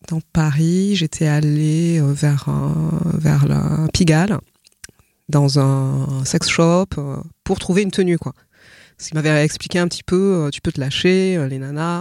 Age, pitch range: 20-39, 145-175 Hz